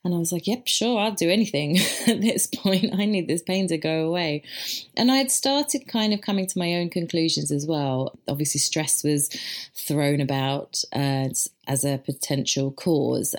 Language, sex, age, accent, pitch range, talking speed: English, female, 30-49, British, 140-210 Hz, 190 wpm